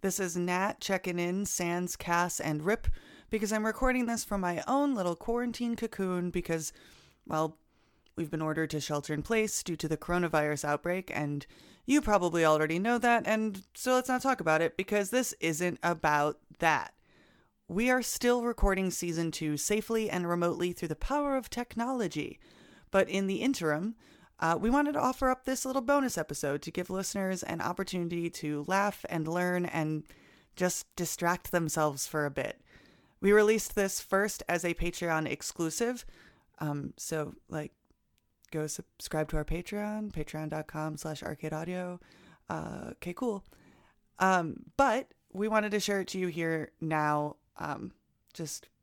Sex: female